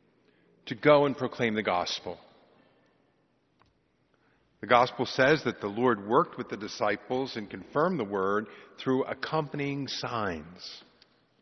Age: 50-69